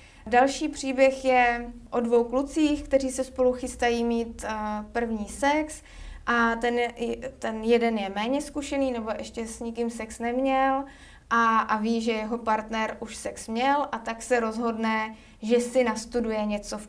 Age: 20-39